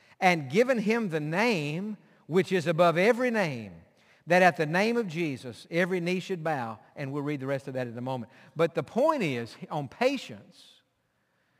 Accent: American